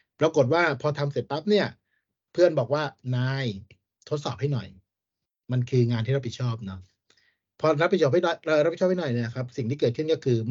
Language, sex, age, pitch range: Thai, male, 60-79, 110-140 Hz